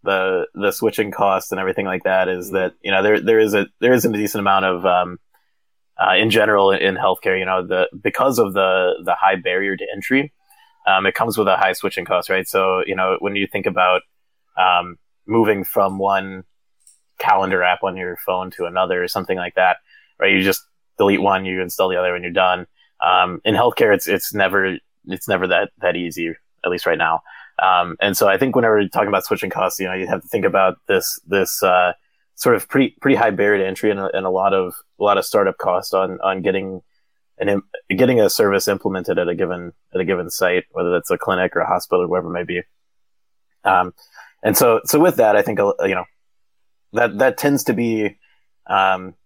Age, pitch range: 20-39, 90-105 Hz